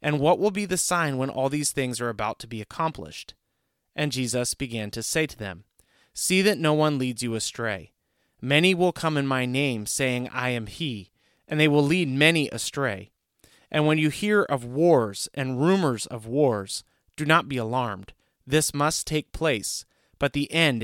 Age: 30-49